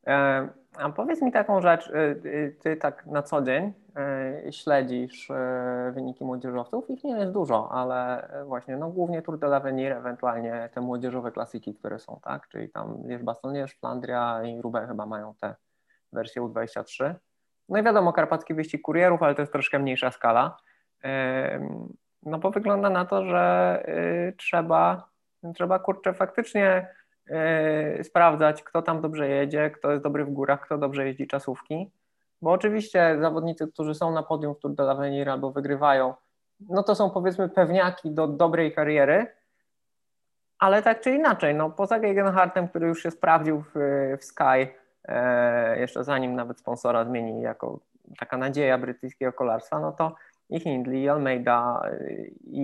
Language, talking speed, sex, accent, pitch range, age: Polish, 150 wpm, male, native, 130-170 Hz, 20-39